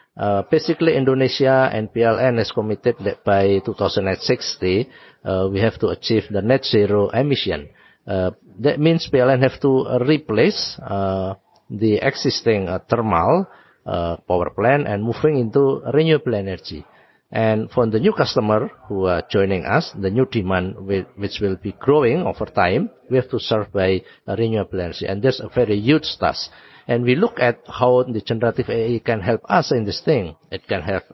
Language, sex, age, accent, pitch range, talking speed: English, male, 50-69, Indonesian, 100-130 Hz, 170 wpm